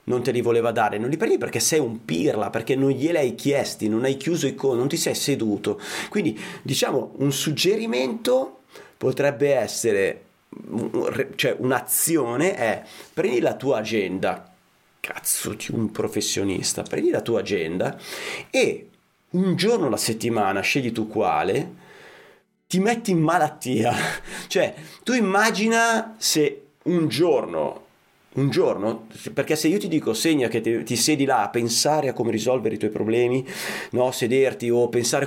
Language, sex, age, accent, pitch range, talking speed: Italian, male, 30-49, native, 125-180 Hz, 155 wpm